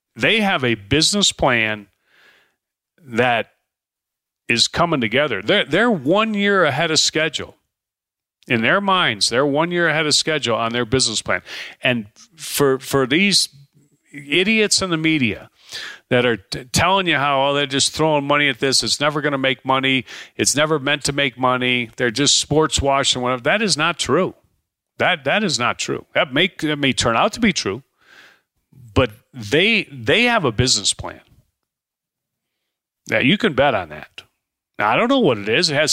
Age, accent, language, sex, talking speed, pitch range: 40-59, American, English, male, 175 wpm, 125-165 Hz